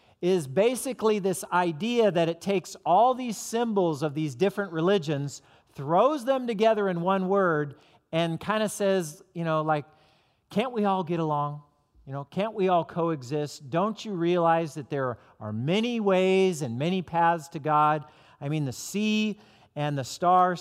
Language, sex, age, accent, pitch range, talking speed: English, male, 40-59, American, 150-190 Hz, 170 wpm